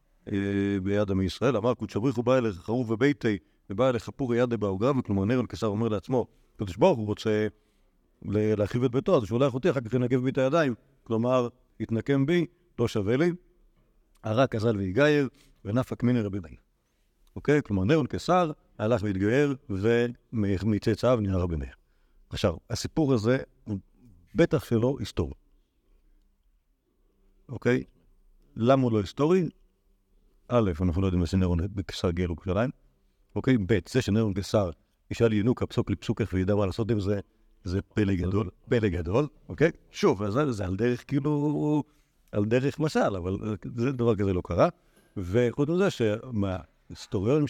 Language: Hebrew